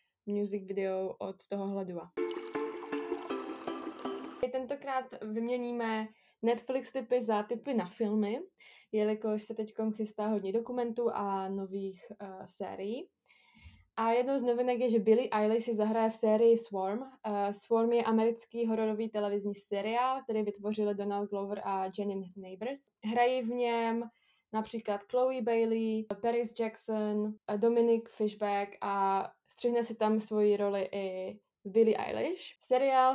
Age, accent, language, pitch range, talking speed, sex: 20-39, native, Czech, 200-235 Hz, 130 wpm, female